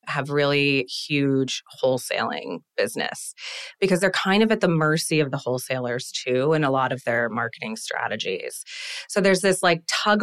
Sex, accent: female, American